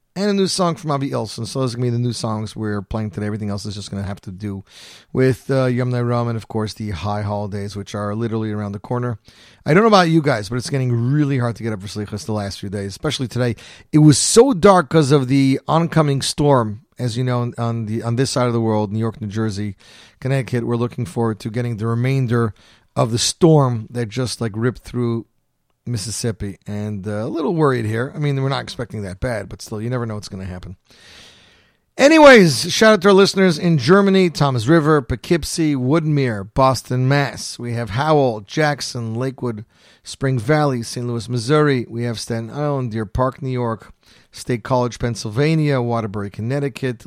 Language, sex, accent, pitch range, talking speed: English, male, American, 110-140 Hz, 210 wpm